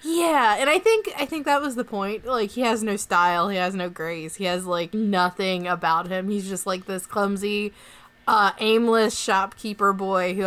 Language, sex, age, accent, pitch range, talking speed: English, female, 20-39, American, 190-260 Hz, 200 wpm